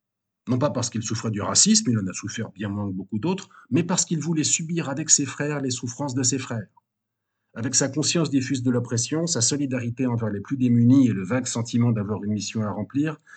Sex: male